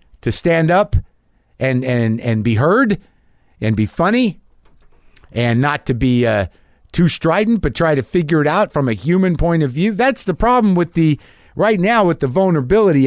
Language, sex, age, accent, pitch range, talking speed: English, male, 50-69, American, 115-165 Hz, 185 wpm